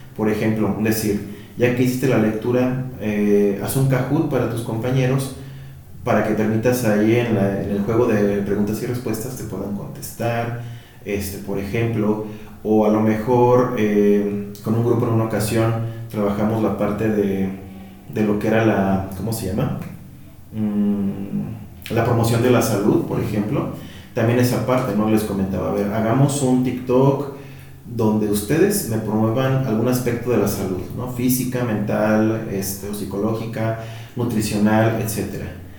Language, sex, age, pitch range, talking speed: Spanish, male, 30-49, 105-125 Hz, 155 wpm